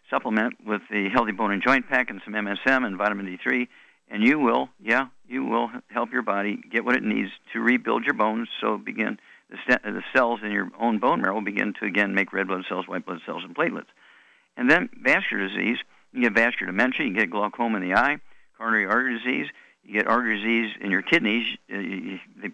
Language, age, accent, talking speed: English, 50-69, American, 215 wpm